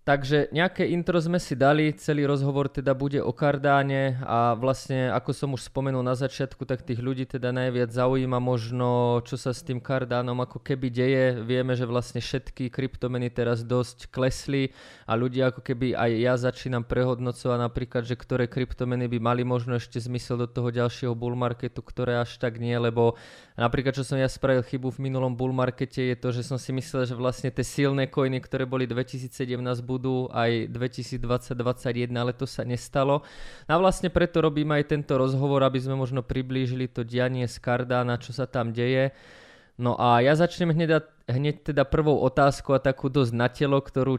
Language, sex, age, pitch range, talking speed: Slovak, male, 20-39, 125-140 Hz, 185 wpm